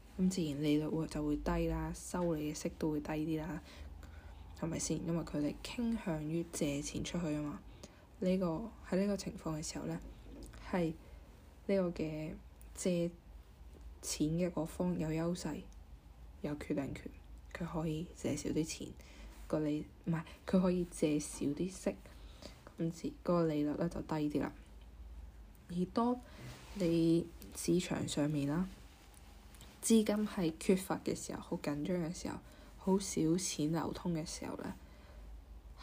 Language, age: Chinese, 10-29